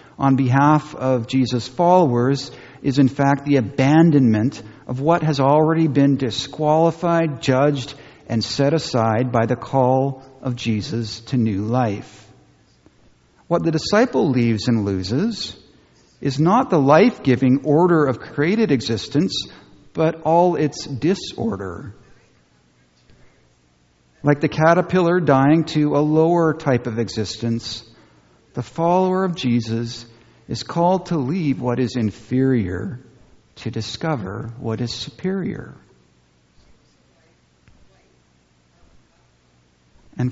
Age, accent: 50-69, American